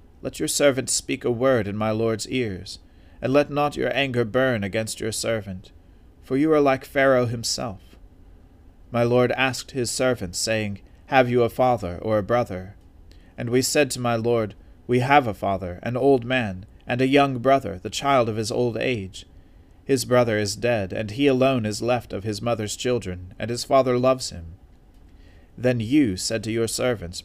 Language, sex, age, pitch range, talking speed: English, male, 40-59, 95-130 Hz, 185 wpm